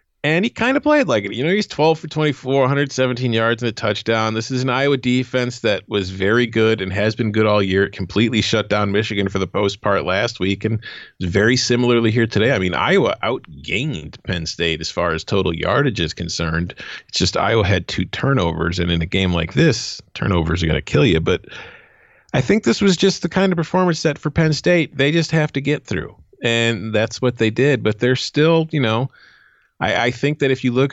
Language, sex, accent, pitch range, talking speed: English, male, American, 100-135 Hz, 230 wpm